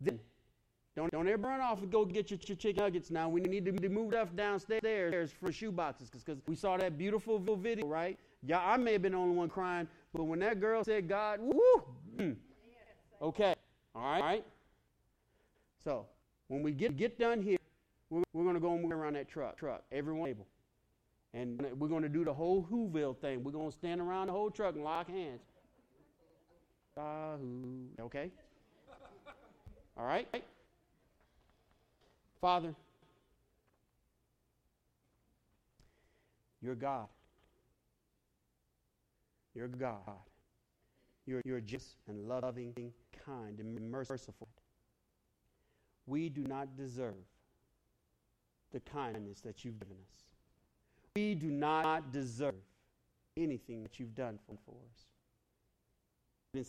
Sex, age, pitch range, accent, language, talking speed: male, 40-59, 125-190 Hz, American, English, 135 wpm